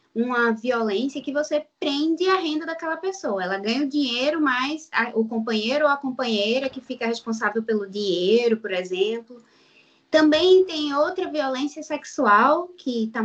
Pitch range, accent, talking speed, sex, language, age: 200-275 Hz, Brazilian, 150 wpm, female, Portuguese, 20-39